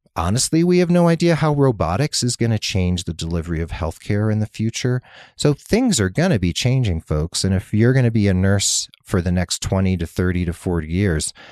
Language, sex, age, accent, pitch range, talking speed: English, male, 40-59, American, 90-125 Hz, 225 wpm